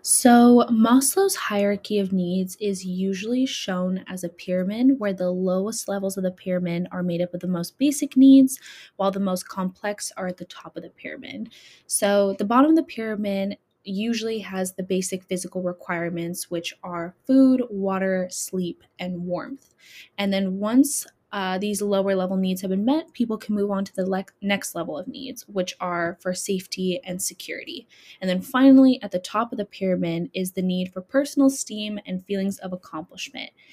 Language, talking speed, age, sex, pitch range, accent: English, 180 wpm, 10-29, female, 185-230 Hz, American